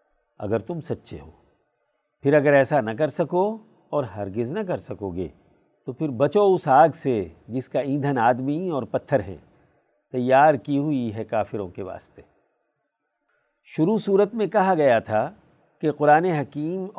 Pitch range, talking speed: 130-170 Hz, 160 wpm